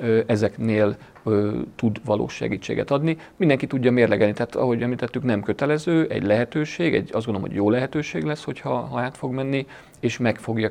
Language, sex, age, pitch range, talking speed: Hungarian, male, 40-59, 110-125 Hz, 160 wpm